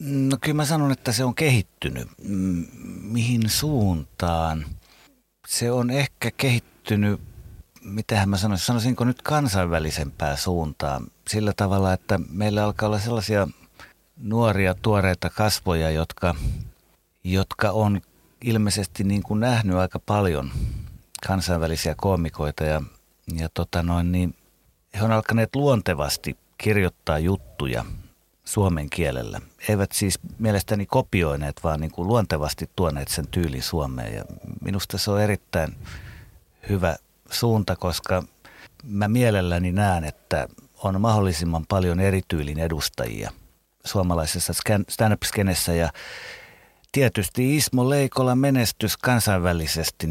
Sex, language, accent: male, Finnish, native